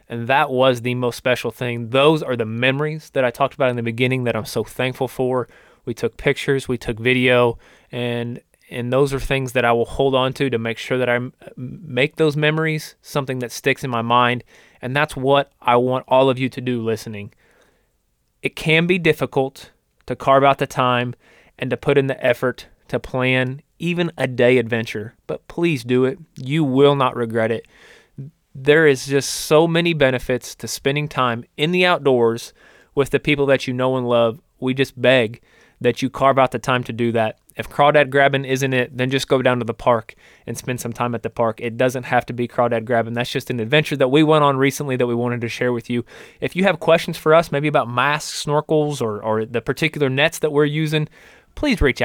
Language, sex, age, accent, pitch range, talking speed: English, male, 20-39, American, 120-145 Hz, 220 wpm